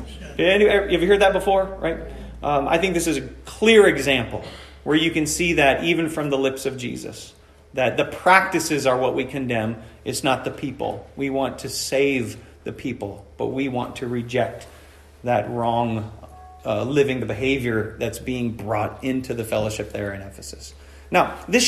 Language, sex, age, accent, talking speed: English, male, 30-49, American, 175 wpm